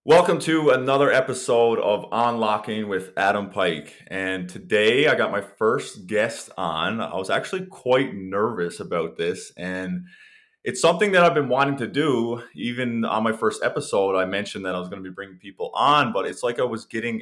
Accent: American